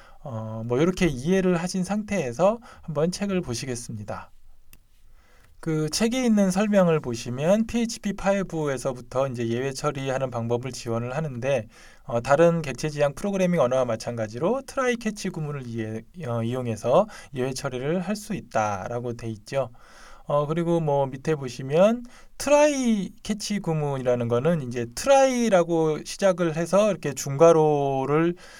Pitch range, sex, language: 130-195 Hz, male, Korean